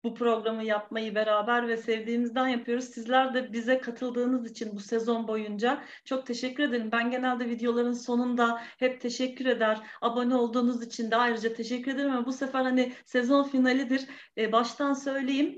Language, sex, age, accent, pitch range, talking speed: Turkish, female, 40-59, native, 235-295 Hz, 160 wpm